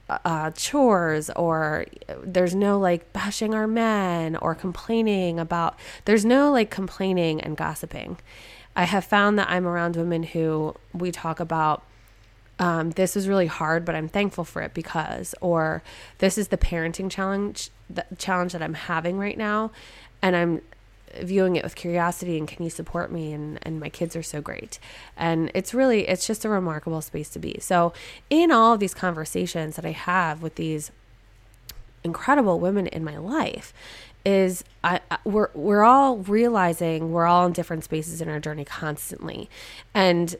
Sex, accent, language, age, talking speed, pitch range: female, American, English, 20-39, 170 wpm, 160-190 Hz